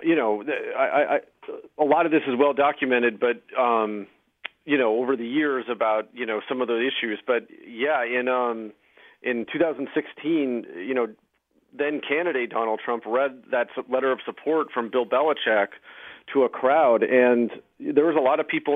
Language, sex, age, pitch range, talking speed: English, male, 40-59, 120-145 Hz, 165 wpm